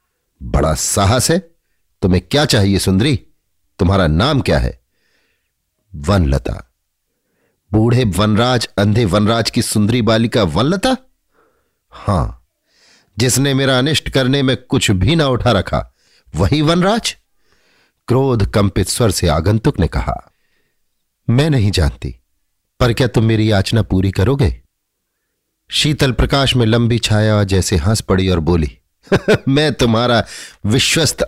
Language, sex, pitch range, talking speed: Hindi, male, 90-125 Hz, 125 wpm